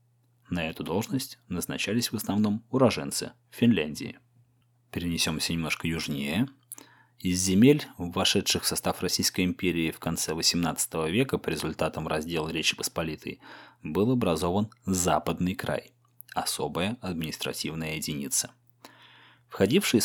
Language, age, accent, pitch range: Russian, 20-39, native, 85-120 Hz